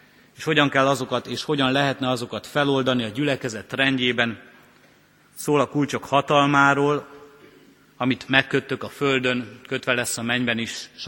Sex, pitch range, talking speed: male, 120-140 Hz, 140 wpm